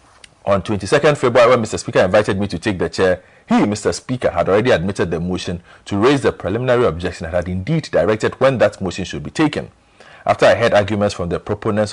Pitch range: 90-110 Hz